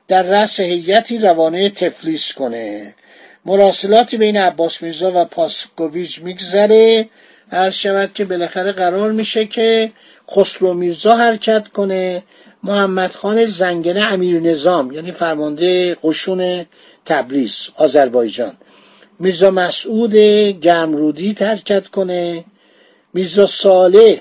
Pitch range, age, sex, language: 170-210 Hz, 50-69, male, Persian